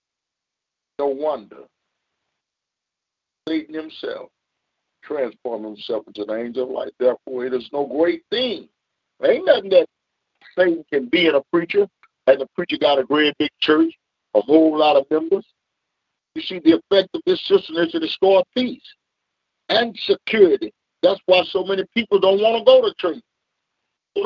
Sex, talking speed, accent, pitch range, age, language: male, 160 wpm, American, 165-265 Hz, 50-69, English